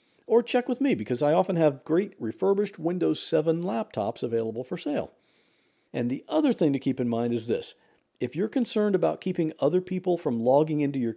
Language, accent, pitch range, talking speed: English, American, 125-185 Hz, 200 wpm